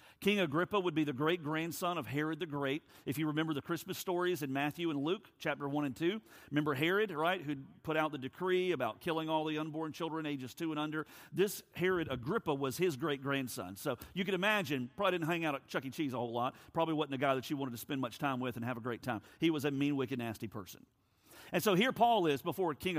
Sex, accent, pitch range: male, American, 130-175 Hz